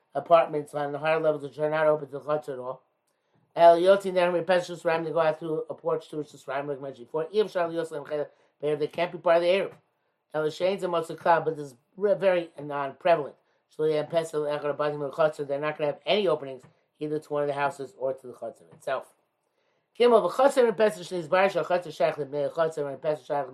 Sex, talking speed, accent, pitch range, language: male, 215 wpm, American, 145-175 Hz, English